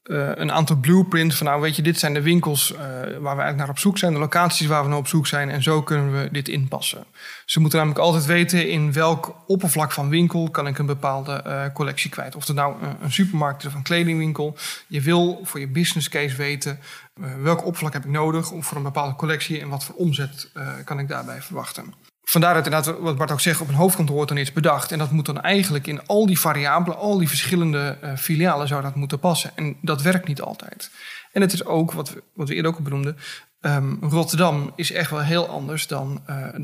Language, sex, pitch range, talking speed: Dutch, male, 145-170 Hz, 240 wpm